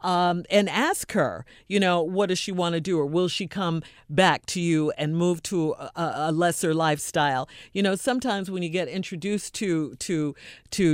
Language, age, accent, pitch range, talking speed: English, 50-69, American, 150-195 Hz, 195 wpm